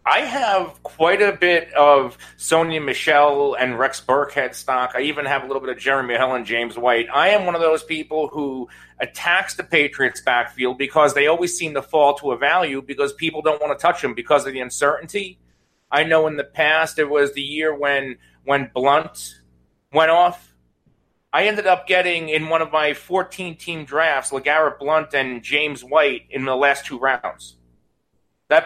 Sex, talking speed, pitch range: male, 190 wpm, 135-165 Hz